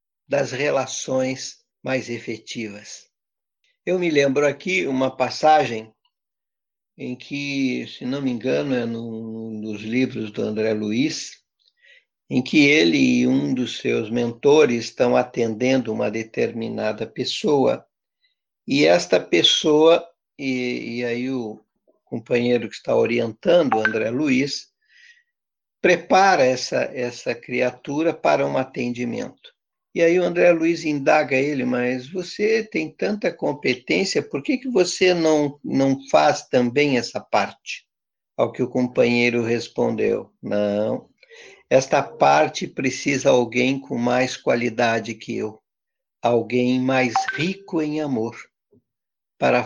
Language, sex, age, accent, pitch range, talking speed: Portuguese, male, 60-79, Brazilian, 120-165 Hz, 120 wpm